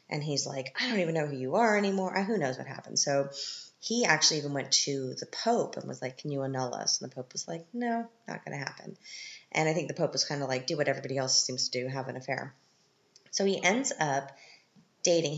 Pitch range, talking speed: 135-160 Hz, 250 wpm